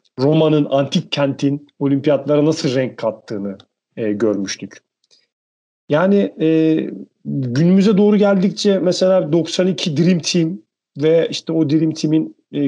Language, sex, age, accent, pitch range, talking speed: Turkish, male, 40-59, native, 135-170 Hz, 115 wpm